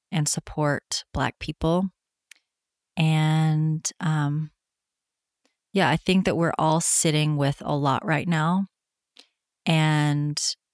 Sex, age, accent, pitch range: female, 30-49, American, 150-170 Hz